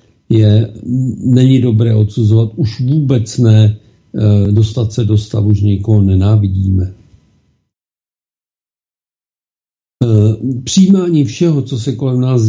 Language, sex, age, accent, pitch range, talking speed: Czech, male, 50-69, native, 105-130 Hz, 95 wpm